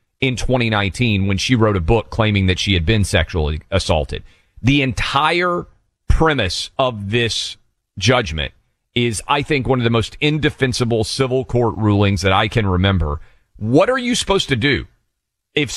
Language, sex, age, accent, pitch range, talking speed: English, male, 40-59, American, 100-135 Hz, 160 wpm